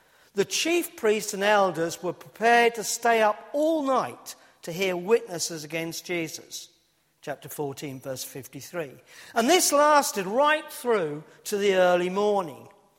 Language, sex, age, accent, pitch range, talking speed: English, male, 50-69, British, 165-230 Hz, 140 wpm